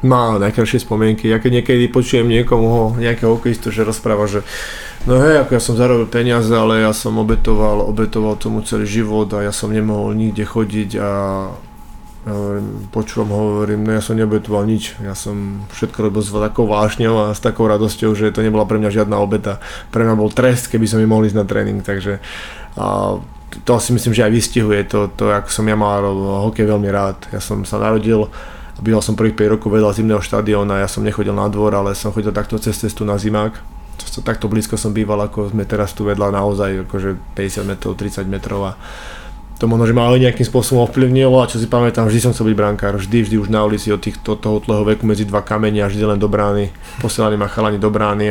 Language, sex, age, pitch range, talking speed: Czech, male, 20-39, 105-115 Hz, 210 wpm